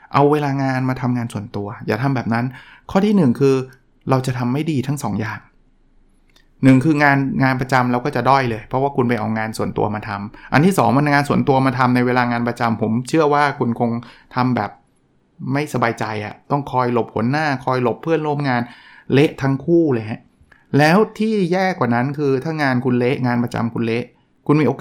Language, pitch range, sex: Thai, 115-145 Hz, male